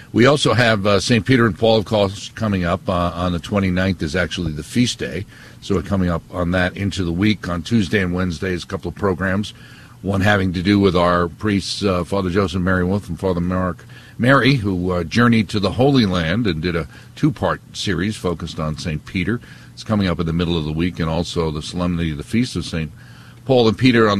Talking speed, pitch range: 235 wpm, 85-110 Hz